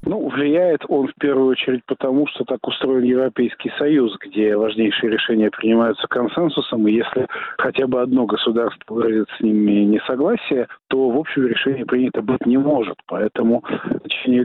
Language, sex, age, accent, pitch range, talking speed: Russian, male, 40-59, native, 110-130 Hz, 155 wpm